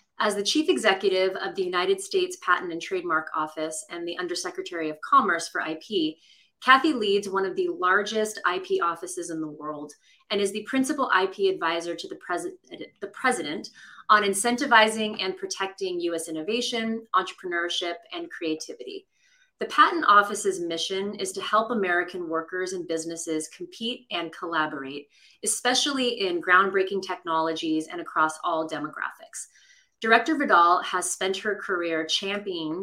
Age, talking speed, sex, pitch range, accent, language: 30-49, 145 wpm, female, 170-230 Hz, American, English